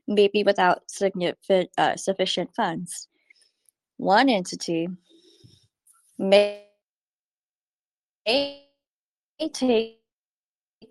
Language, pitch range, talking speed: English, 185-255 Hz, 60 wpm